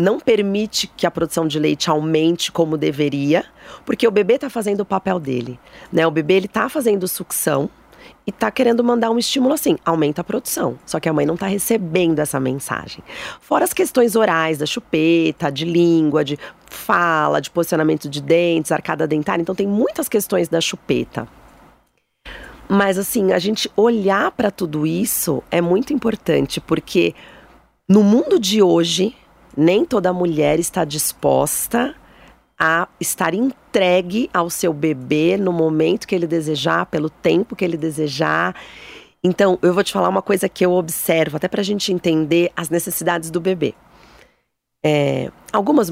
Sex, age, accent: female, 30-49, Brazilian